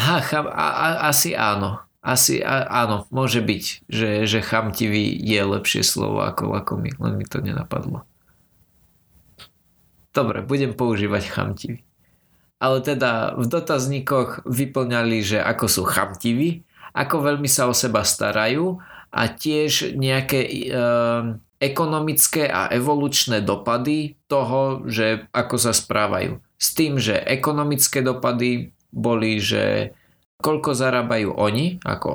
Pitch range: 110-140 Hz